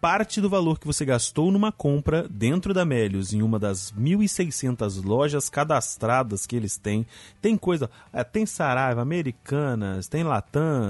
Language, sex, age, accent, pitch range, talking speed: Portuguese, male, 30-49, Brazilian, 110-150 Hz, 150 wpm